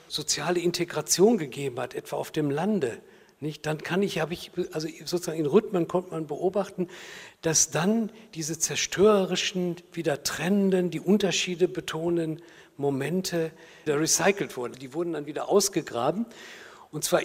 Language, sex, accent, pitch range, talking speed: German, male, German, 150-185 Hz, 145 wpm